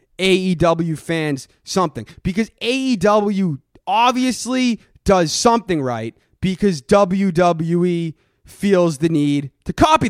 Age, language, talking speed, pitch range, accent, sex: 20-39, English, 95 wpm, 135-190 Hz, American, male